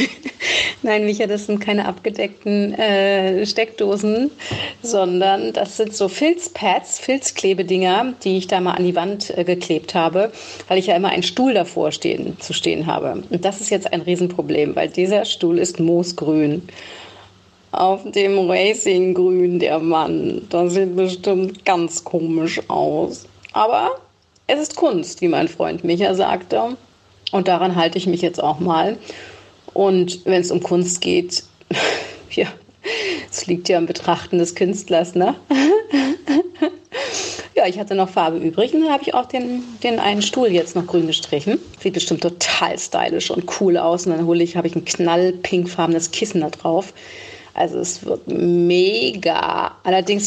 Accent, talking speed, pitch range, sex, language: German, 155 wpm, 175-215 Hz, female, German